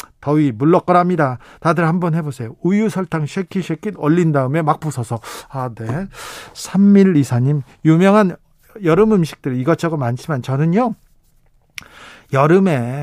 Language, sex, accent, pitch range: Korean, male, native, 130-180 Hz